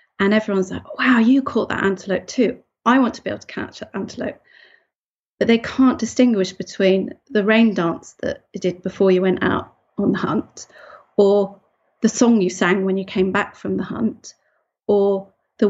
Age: 30-49